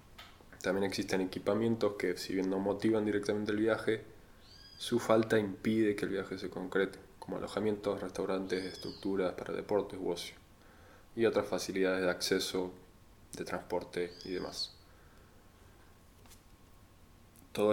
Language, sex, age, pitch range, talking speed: Spanish, male, 20-39, 90-105 Hz, 125 wpm